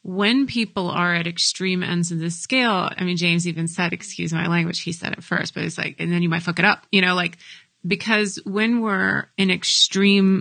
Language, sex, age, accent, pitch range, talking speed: English, female, 30-49, American, 170-195 Hz, 225 wpm